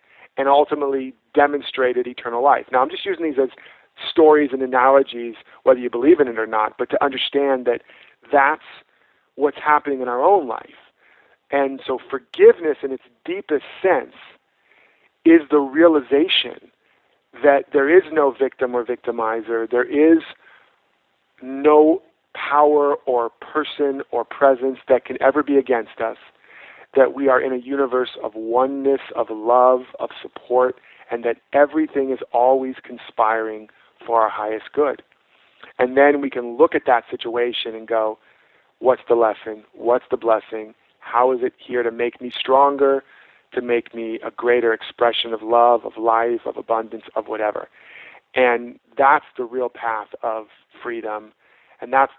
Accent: American